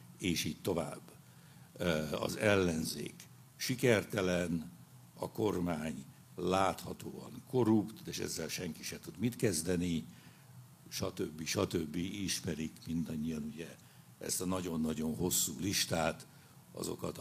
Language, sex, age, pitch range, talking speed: Hungarian, male, 60-79, 90-120 Hz, 100 wpm